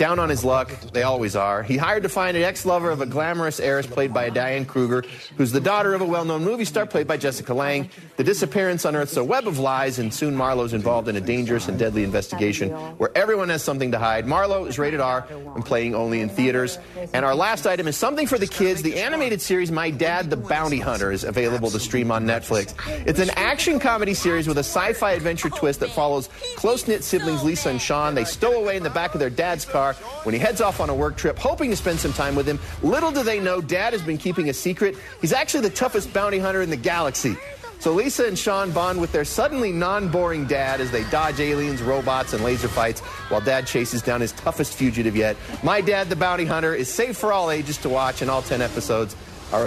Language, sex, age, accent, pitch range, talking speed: English, male, 30-49, American, 125-180 Hz, 230 wpm